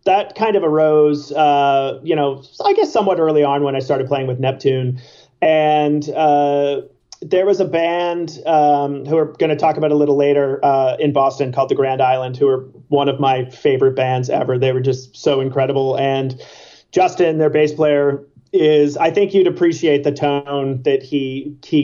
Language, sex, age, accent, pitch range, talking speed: English, male, 30-49, American, 130-150 Hz, 190 wpm